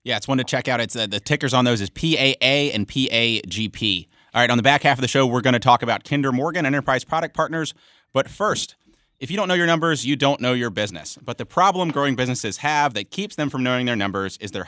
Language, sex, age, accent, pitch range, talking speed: English, male, 30-49, American, 115-150 Hz, 260 wpm